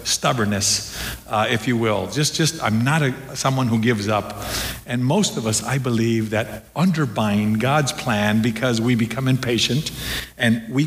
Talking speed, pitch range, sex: 165 wpm, 115-145 Hz, male